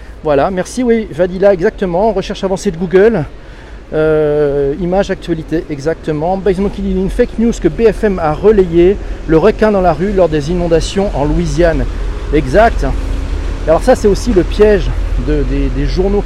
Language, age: French, 40-59